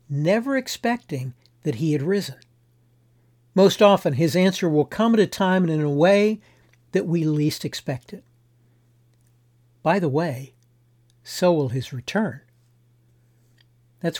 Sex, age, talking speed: male, 60-79, 135 wpm